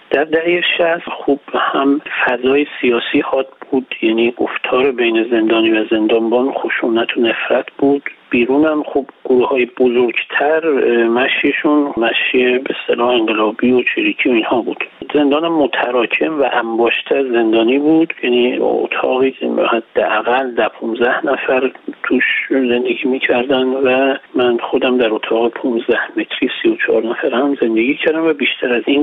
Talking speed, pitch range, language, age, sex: 135 wpm, 115-155 Hz, Persian, 50-69, male